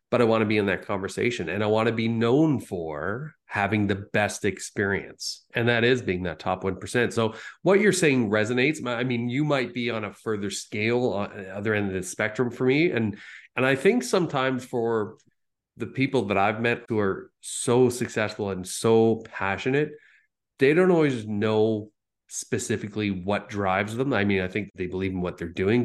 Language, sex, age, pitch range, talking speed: English, male, 30-49, 95-120 Hz, 195 wpm